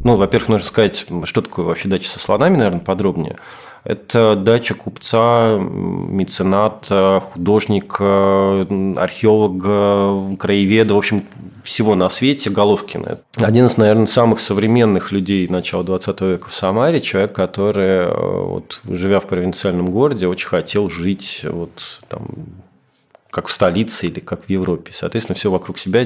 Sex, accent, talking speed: male, native, 130 wpm